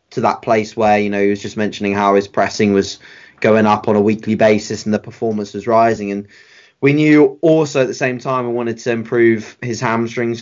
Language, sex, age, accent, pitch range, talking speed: English, male, 20-39, British, 105-120 Hz, 225 wpm